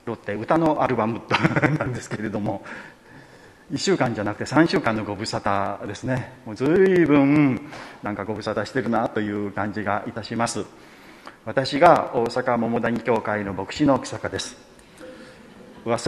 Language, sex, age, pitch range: Japanese, male, 40-59, 105-145 Hz